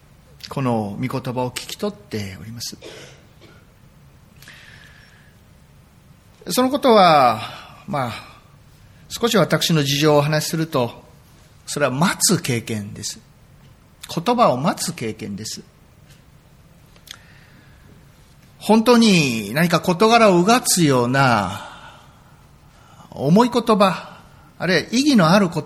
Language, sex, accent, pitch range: Japanese, male, native, 130-200 Hz